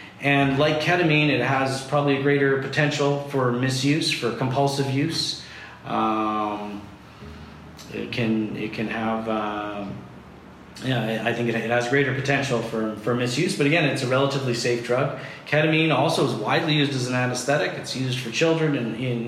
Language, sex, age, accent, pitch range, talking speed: English, male, 40-59, American, 110-135 Hz, 160 wpm